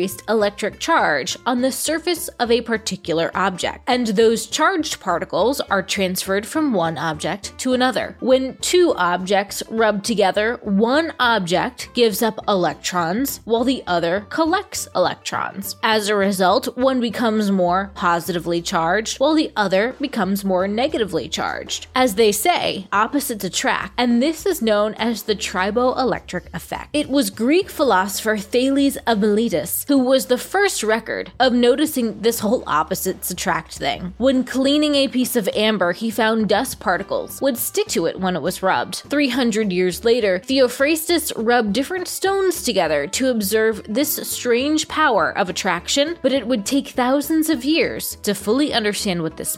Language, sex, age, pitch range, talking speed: English, female, 20-39, 200-270 Hz, 155 wpm